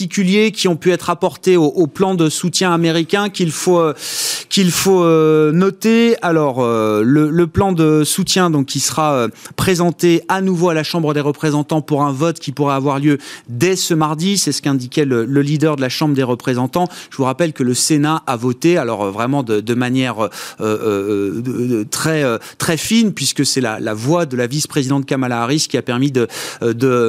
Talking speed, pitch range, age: 210 wpm, 135-175 Hz, 30-49